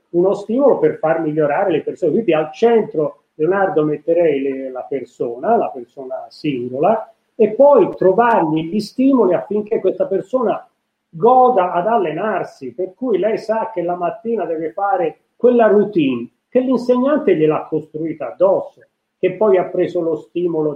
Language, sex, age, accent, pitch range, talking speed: Italian, male, 40-59, native, 150-230 Hz, 145 wpm